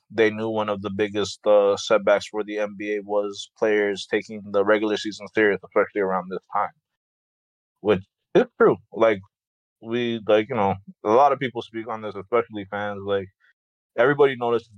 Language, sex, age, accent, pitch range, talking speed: English, male, 20-39, American, 100-115 Hz, 170 wpm